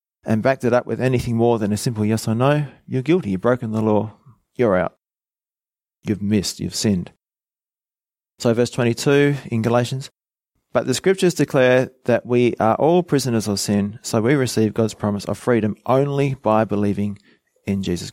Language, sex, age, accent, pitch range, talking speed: English, male, 30-49, Australian, 105-130 Hz, 175 wpm